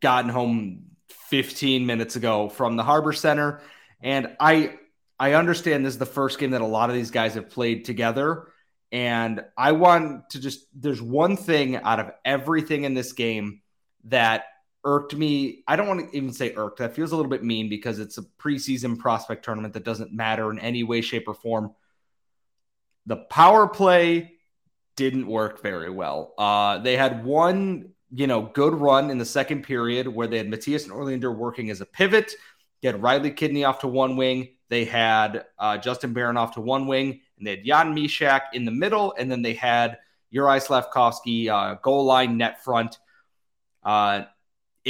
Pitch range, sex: 115-140 Hz, male